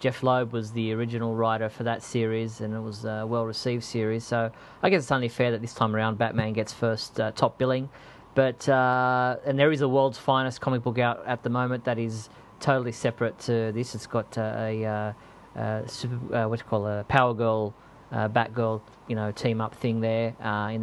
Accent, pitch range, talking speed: Australian, 115-135 Hz, 215 wpm